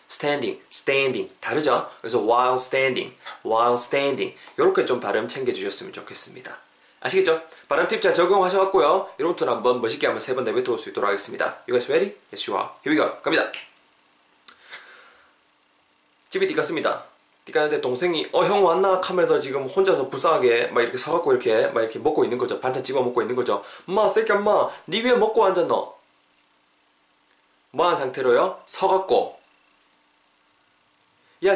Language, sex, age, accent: Korean, male, 20-39, native